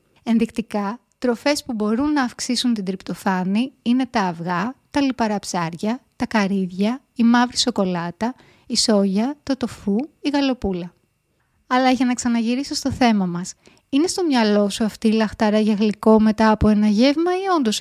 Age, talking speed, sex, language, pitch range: 20-39, 160 wpm, female, Greek, 205-255 Hz